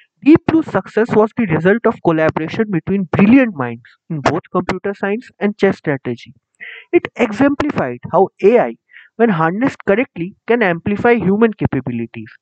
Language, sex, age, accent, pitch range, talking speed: English, male, 30-49, Indian, 145-230 Hz, 140 wpm